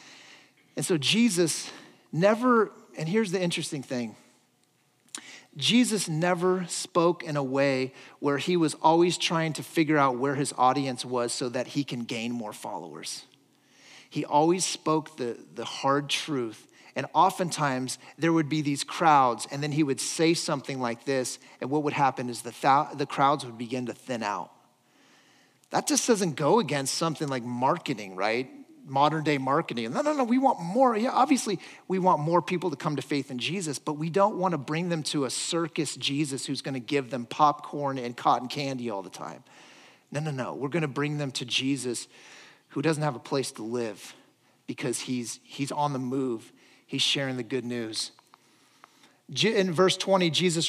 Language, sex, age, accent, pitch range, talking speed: English, male, 40-59, American, 130-175 Hz, 180 wpm